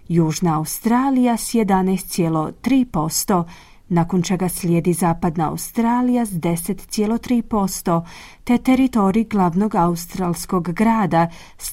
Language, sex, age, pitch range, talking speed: Croatian, female, 30-49, 175-235 Hz, 85 wpm